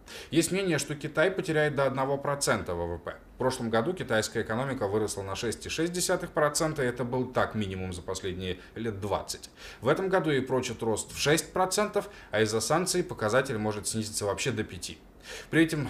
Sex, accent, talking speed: male, native, 165 wpm